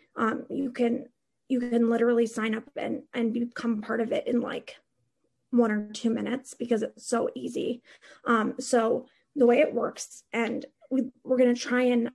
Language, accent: English, American